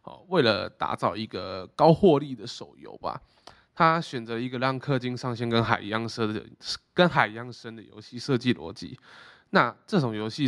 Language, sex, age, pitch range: Chinese, male, 20-39, 115-135 Hz